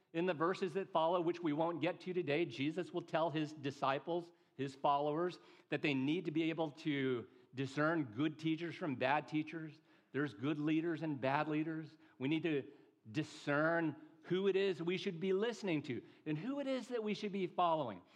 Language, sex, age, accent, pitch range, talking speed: English, male, 50-69, American, 135-175 Hz, 190 wpm